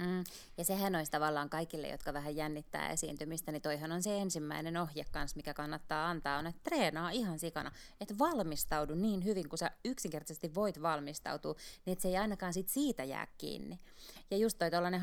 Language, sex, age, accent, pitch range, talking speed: Finnish, female, 20-39, native, 150-175 Hz, 185 wpm